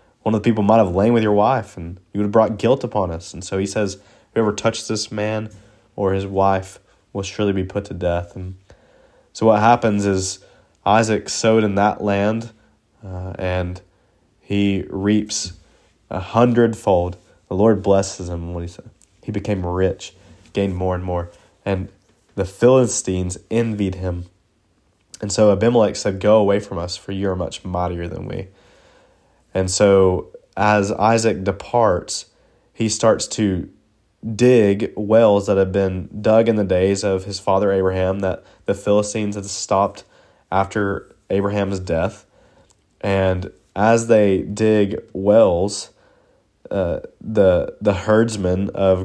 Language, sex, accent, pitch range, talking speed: English, male, American, 95-110 Hz, 150 wpm